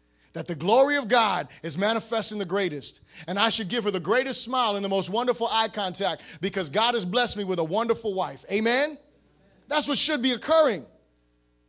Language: English